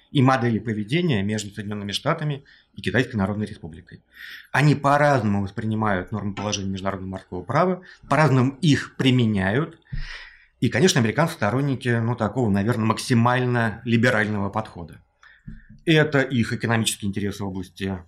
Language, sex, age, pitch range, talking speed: Russian, male, 30-49, 105-145 Hz, 125 wpm